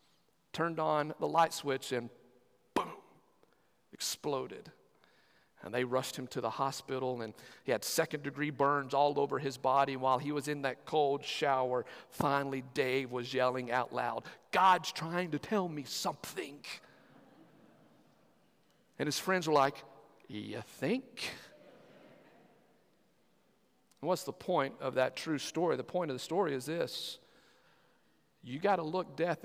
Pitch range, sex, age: 135-170 Hz, male, 50-69